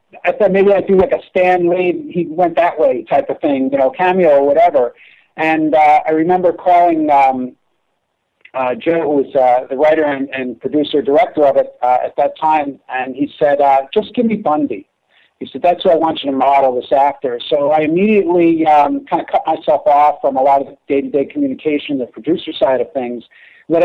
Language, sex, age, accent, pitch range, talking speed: English, male, 50-69, American, 140-175 Hz, 210 wpm